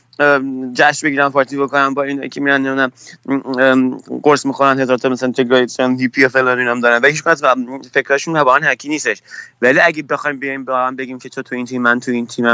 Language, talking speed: Persian, 205 wpm